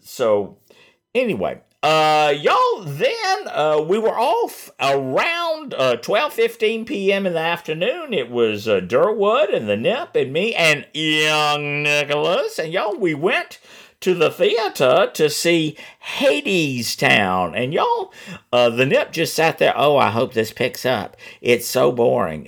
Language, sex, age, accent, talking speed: English, male, 50-69, American, 150 wpm